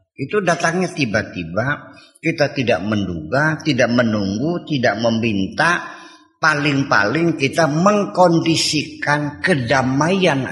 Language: Indonesian